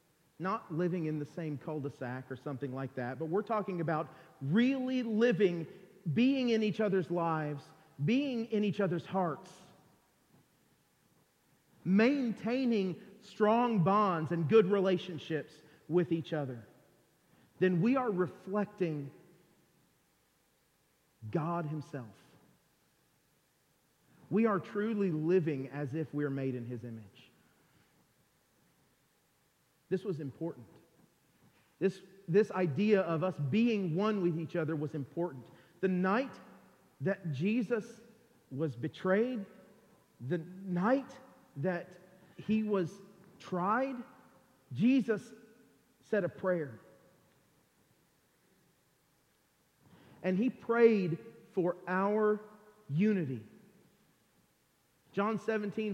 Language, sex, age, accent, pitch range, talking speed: English, male, 40-59, American, 160-210 Hz, 100 wpm